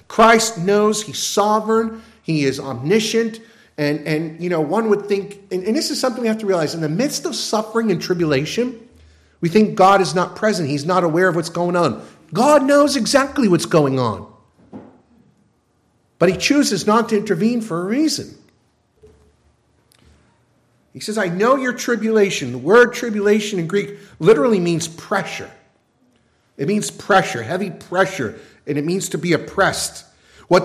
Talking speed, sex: 165 wpm, male